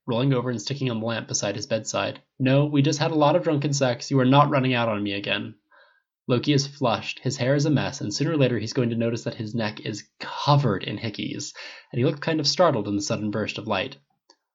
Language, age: English, 20-39